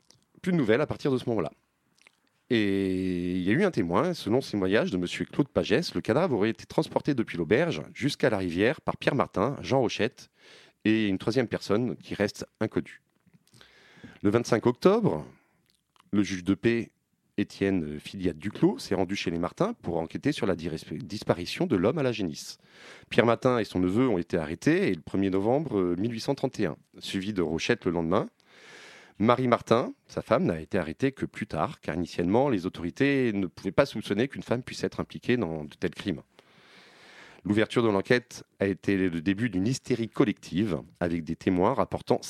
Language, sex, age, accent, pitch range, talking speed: French, male, 30-49, French, 90-120 Hz, 180 wpm